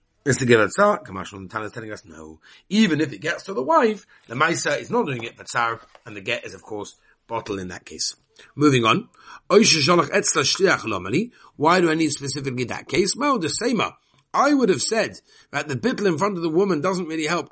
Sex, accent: male, British